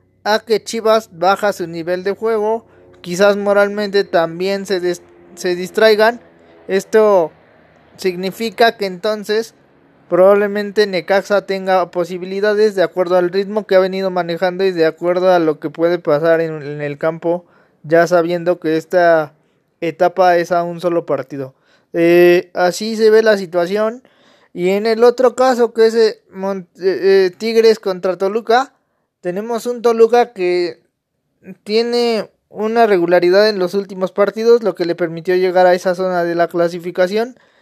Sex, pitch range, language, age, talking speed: male, 175-215 Hz, Spanish, 20-39, 145 wpm